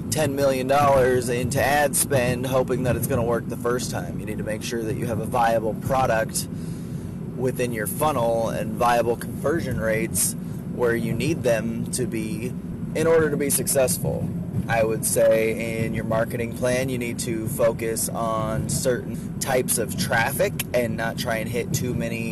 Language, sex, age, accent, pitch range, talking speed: English, male, 20-39, American, 110-125 Hz, 180 wpm